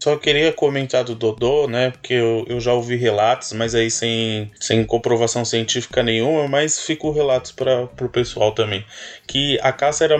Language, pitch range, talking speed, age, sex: Portuguese, 120-145 Hz, 175 wpm, 20-39, male